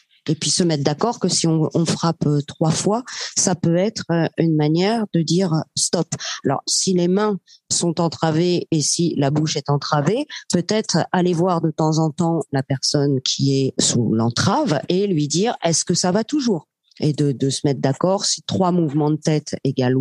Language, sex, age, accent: French, female, 40-59, French